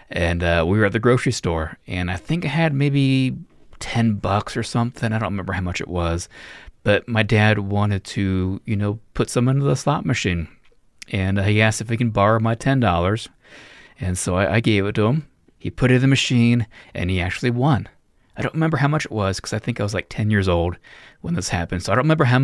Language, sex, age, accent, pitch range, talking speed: English, male, 30-49, American, 90-120 Hz, 240 wpm